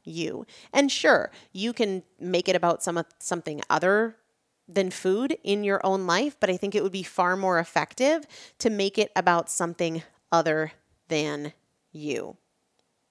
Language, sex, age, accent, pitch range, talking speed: English, female, 30-49, American, 170-225 Hz, 155 wpm